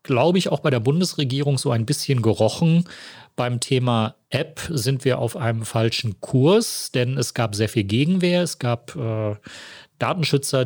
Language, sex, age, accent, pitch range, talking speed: German, male, 40-59, German, 115-145 Hz, 165 wpm